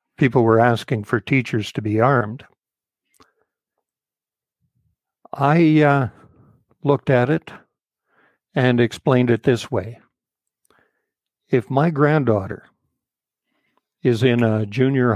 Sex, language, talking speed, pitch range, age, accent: male, English, 100 wpm, 120-140 Hz, 60-79, American